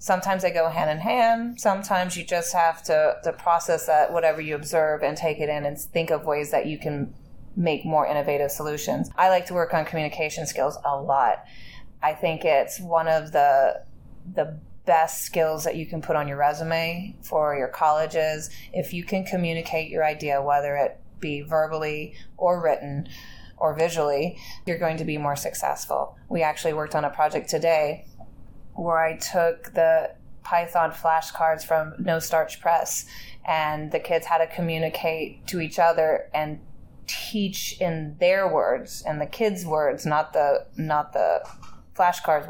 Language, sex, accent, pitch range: English, female, American, 150-170 Hz